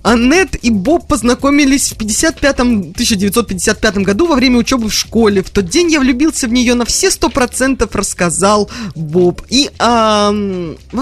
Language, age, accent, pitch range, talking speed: Russian, 20-39, native, 195-270 Hz, 160 wpm